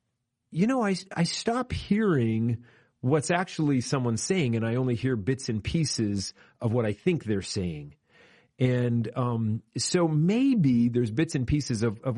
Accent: American